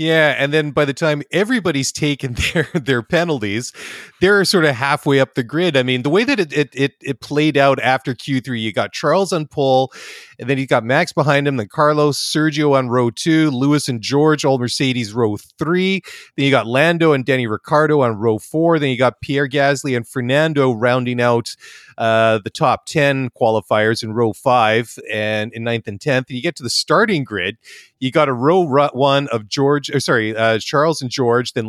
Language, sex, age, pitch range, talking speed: English, male, 30-49, 120-150 Hz, 205 wpm